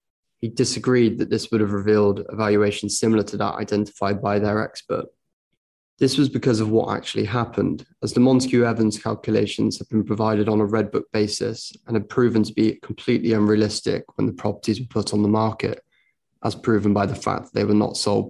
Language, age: English, 20-39